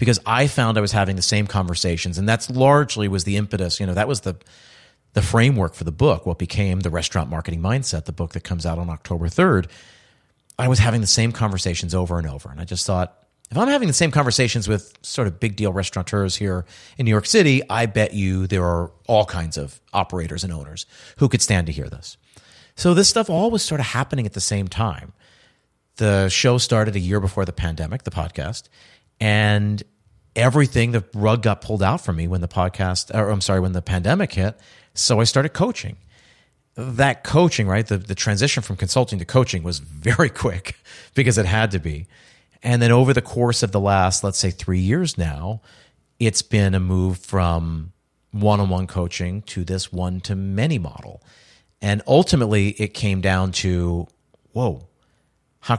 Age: 40-59